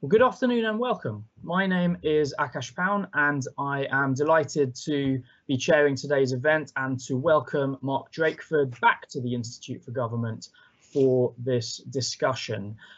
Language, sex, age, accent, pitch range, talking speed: English, male, 20-39, British, 120-155 Hz, 155 wpm